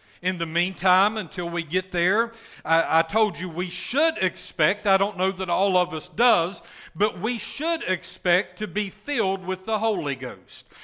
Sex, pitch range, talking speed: male, 185-220 Hz, 185 wpm